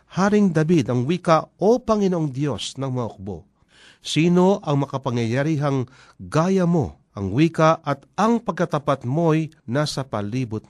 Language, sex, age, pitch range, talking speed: Filipino, male, 50-69, 125-175 Hz, 125 wpm